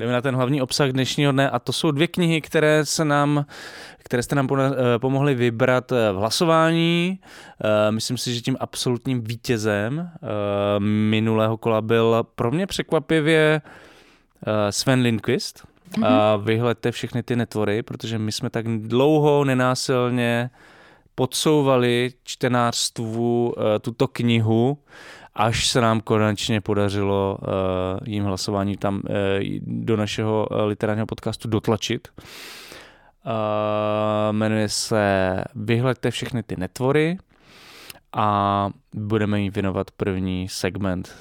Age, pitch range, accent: 20-39, 105-130 Hz, native